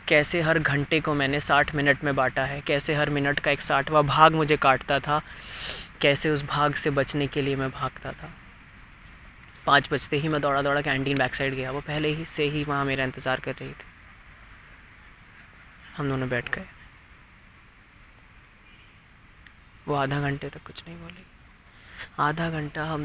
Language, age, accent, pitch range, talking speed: Hindi, 20-39, native, 130-155 Hz, 170 wpm